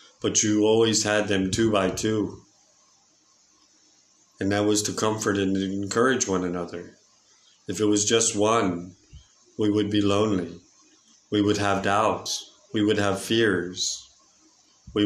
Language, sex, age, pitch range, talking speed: English, male, 50-69, 95-110 Hz, 140 wpm